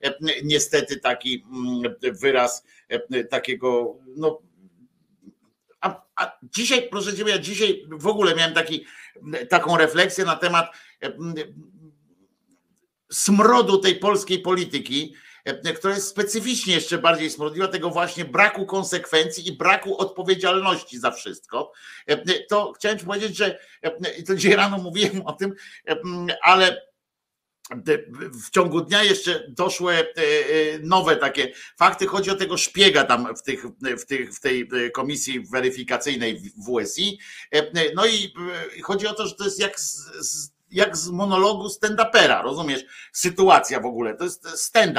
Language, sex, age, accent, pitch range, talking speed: Polish, male, 50-69, native, 155-200 Hz, 130 wpm